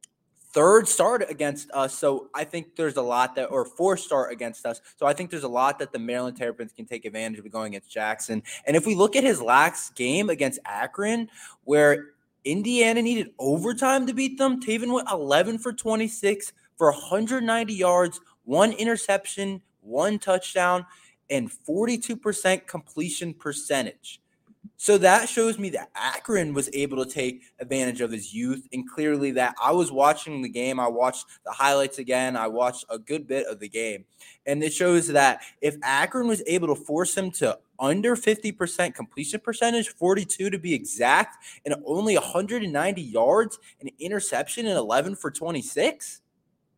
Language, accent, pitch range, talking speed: English, American, 135-200 Hz, 170 wpm